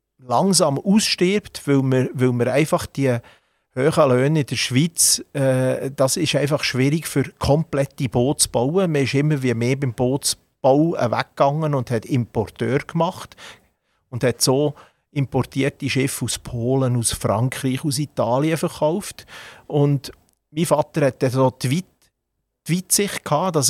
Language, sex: German, male